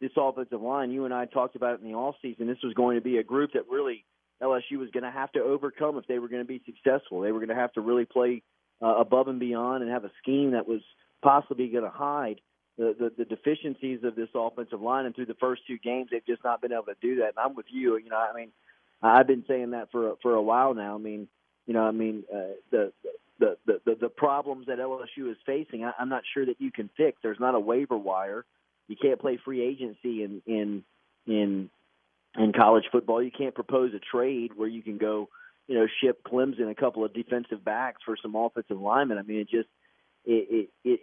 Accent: American